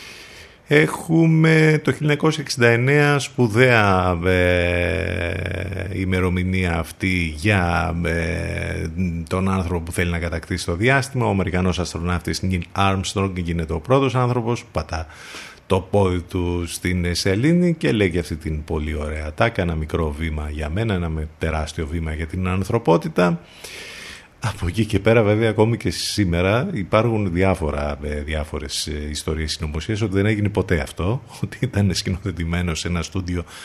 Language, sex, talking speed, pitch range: Greek, male, 130 wpm, 85-110 Hz